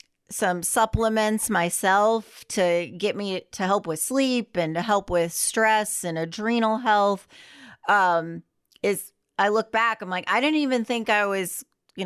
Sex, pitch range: female, 175-215 Hz